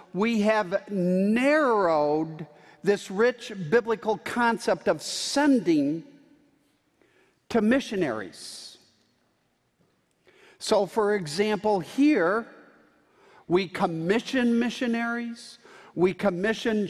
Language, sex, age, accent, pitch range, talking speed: English, male, 50-69, American, 195-240 Hz, 70 wpm